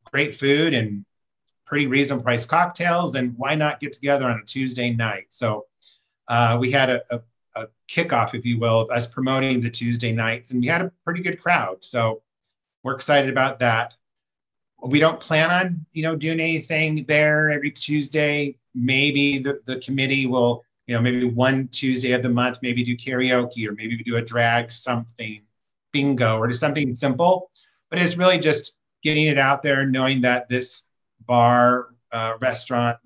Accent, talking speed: American, 175 wpm